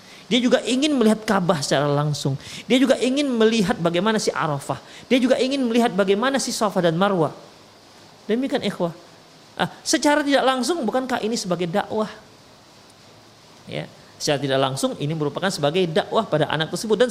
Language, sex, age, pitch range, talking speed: Indonesian, male, 30-49, 140-220 Hz, 160 wpm